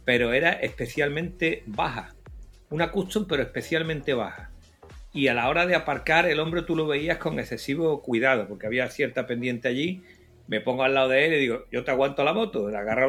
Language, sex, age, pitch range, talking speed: Spanish, male, 60-79, 120-160 Hz, 195 wpm